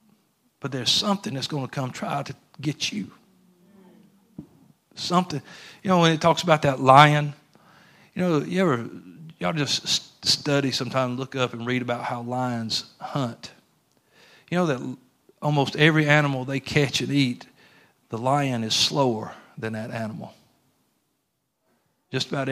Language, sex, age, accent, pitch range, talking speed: English, male, 50-69, American, 130-160 Hz, 145 wpm